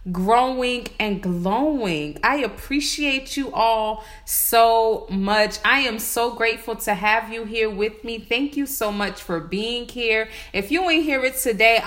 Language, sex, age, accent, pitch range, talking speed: English, female, 30-49, American, 210-260 Hz, 155 wpm